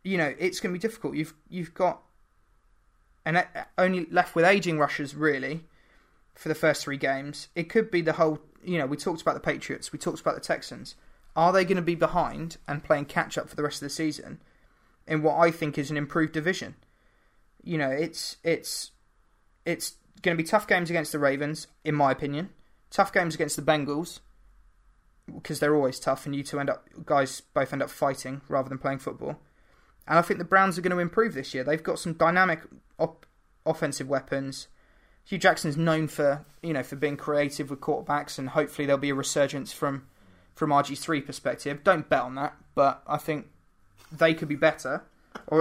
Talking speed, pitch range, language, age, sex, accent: 200 wpm, 145-175 Hz, English, 20-39, male, British